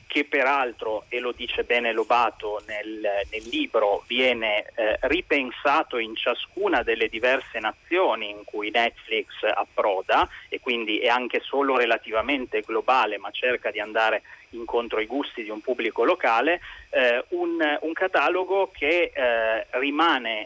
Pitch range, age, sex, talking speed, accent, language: 115-170 Hz, 30-49, male, 140 wpm, native, Italian